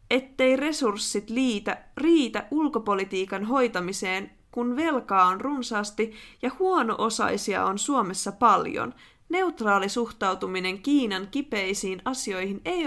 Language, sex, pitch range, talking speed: Finnish, female, 205-300 Hz, 100 wpm